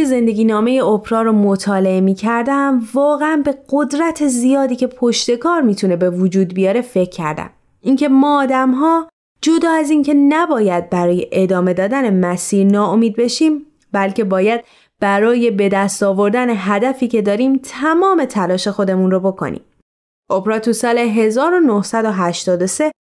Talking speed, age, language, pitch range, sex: 135 wpm, 20-39, Persian, 195-265 Hz, female